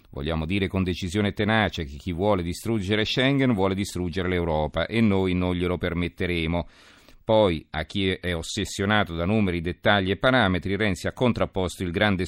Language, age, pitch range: Italian, 50-69, 85-100 Hz